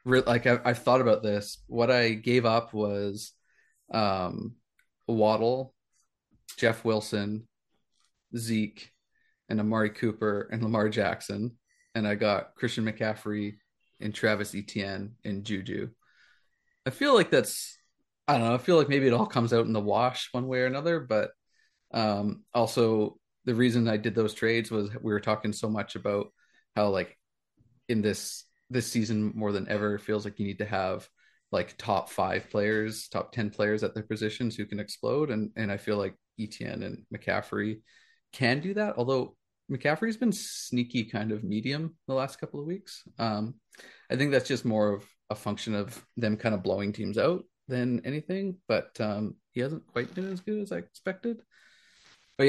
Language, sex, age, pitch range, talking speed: English, male, 30-49, 105-125 Hz, 175 wpm